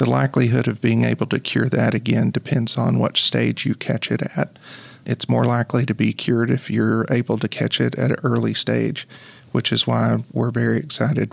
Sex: male